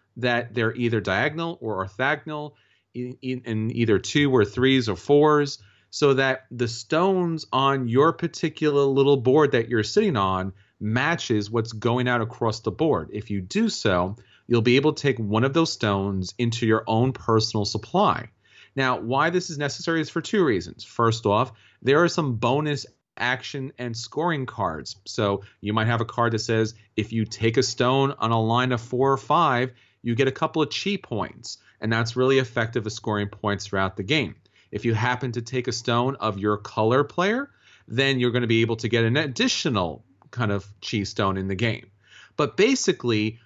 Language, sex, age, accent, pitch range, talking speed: English, male, 30-49, American, 110-135 Hz, 190 wpm